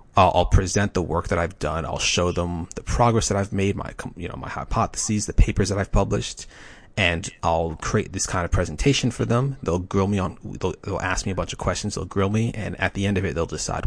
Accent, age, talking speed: American, 30-49, 245 wpm